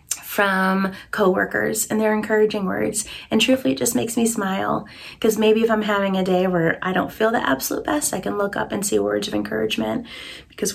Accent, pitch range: American, 200-255 Hz